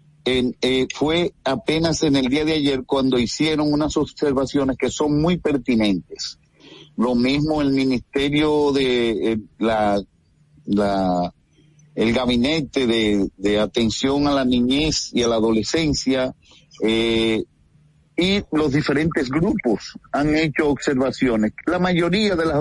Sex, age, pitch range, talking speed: male, 50-69, 120-155 Hz, 125 wpm